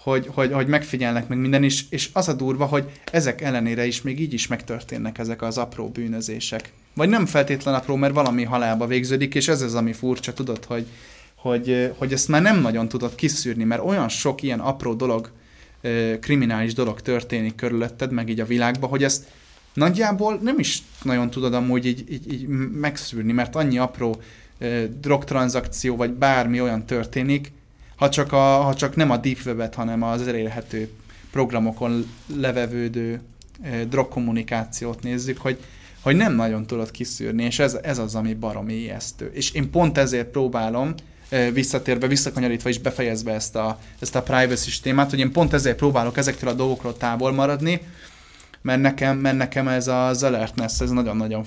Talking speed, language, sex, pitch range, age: 170 wpm, Hungarian, male, 115-135 Hz, 20-39